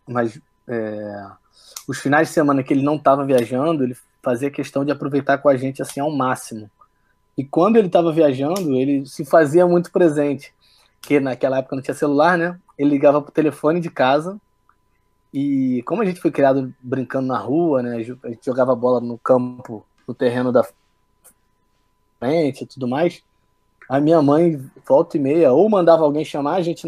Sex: male